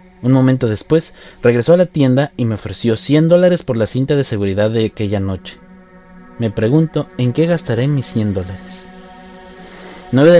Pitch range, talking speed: 110-175 Hz, 175 wpm